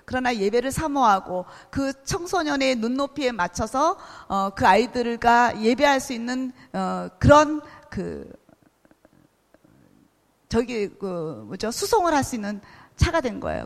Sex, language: female, Korean